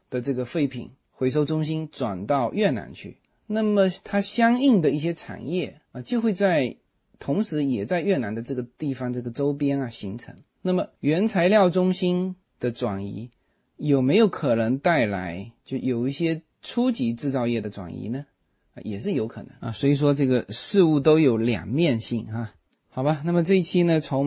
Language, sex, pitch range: Chinese, male, 120-170 Hz